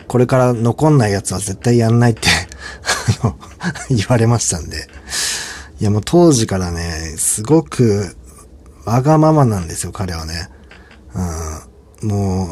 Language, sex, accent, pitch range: Japanese, male, native, 80-120 Hz